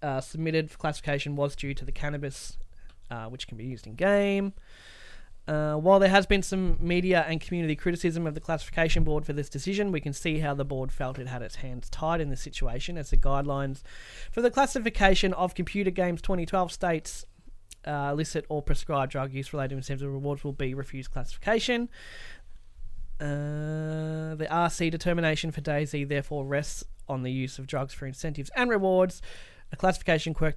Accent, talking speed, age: Australian, 185 wpm, 20-39